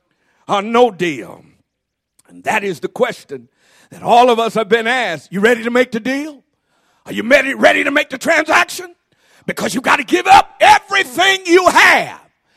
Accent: American